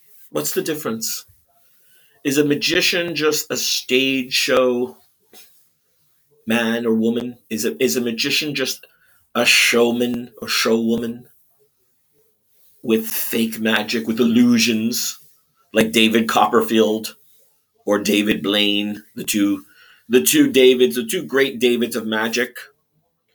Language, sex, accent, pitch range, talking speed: English, male, American, 110-145 Hz, 115 wpm